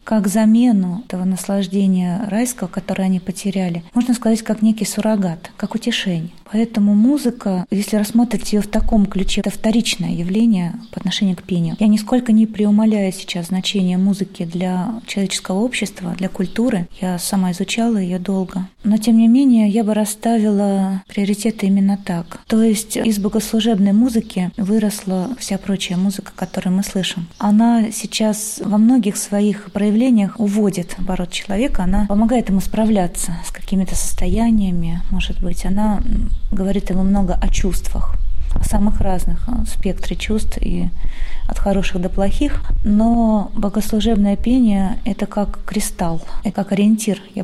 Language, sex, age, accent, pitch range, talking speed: Russian, female, 20-39, native, 190-215 Hz, 145 wpm